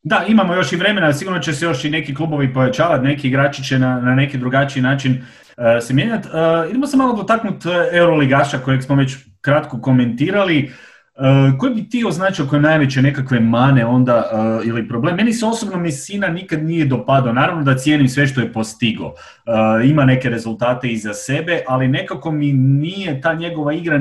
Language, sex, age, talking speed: Croatian, male, 30-49, 190 wpm